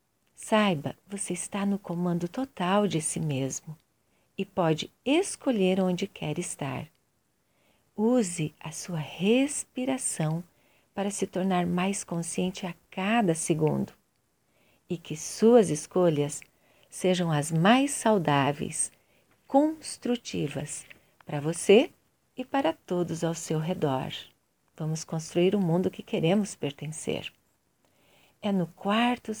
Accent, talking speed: Brazilian, 110 wpm